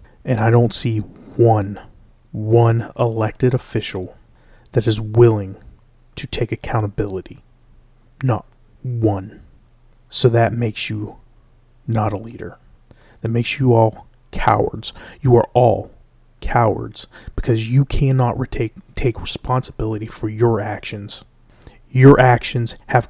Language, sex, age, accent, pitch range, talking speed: English, male, 30-49, American, 105-120 Hz, 110 wpm